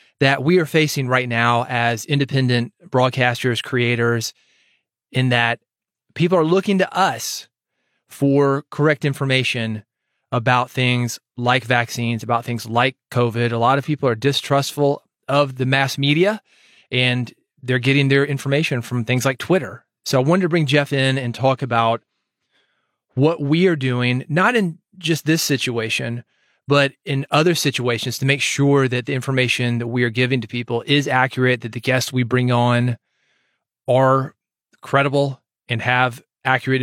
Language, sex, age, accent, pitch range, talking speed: English, male, 30-49, American, 120-140 Hz, 155 wpm